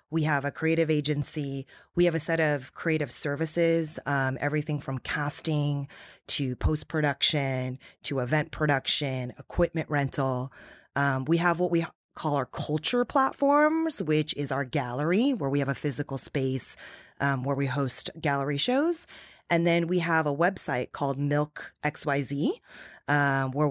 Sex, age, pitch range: female, 20-39, 135-160 Hz